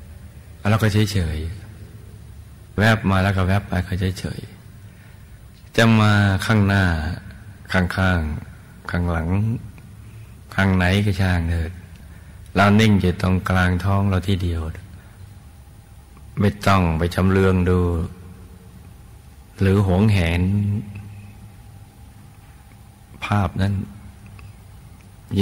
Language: Thai